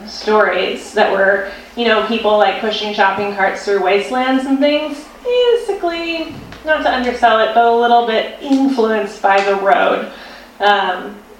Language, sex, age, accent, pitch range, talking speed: English, female, 30-49, American, 205-265 Hz, 145 wpm